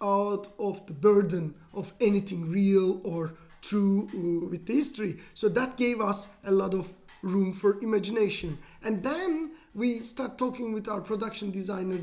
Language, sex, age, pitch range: English, male, 30-49, 190-220 Hz